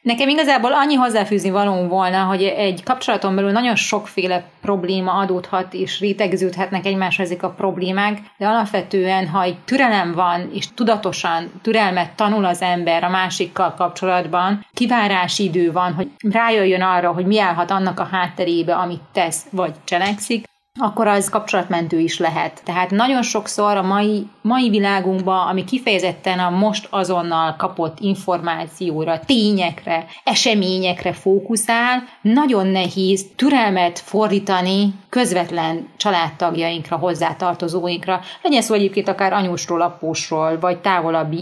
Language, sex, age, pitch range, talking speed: Hungarian, female, 30-49, 175-210 Hz, 125 wpm